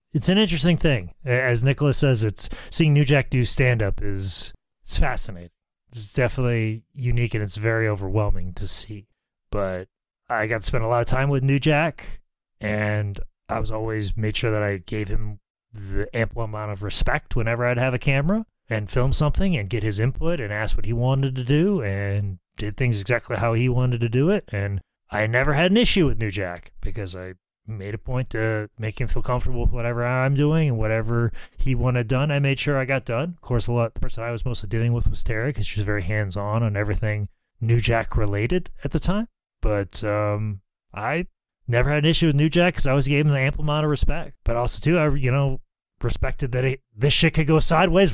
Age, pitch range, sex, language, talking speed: 30-49, 105-140 Hz, male, English, 220 wpm